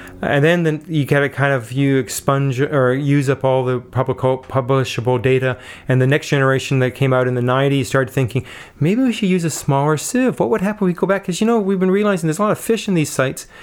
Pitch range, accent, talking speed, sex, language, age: 130-155 Hz, American, 250 wpm, male, English, 30-49